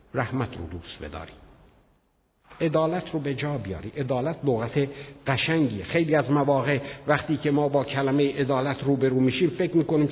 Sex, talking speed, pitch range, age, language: male, 165 wpm, 110-145 Hz, 60-79, Persian